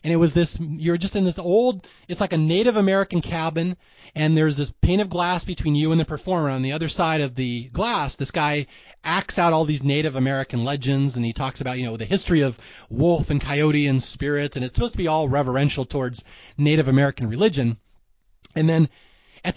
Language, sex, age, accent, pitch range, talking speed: English, male, 30-49, American, 135-190 Hz, 215 wpm